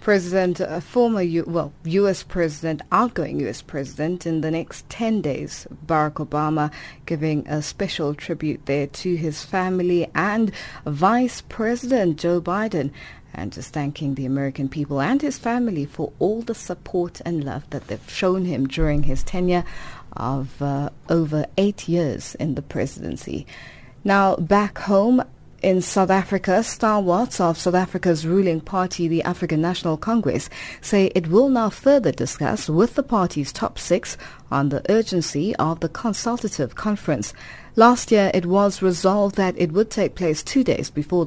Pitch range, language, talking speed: 150-200 Hz, English, 155 wpm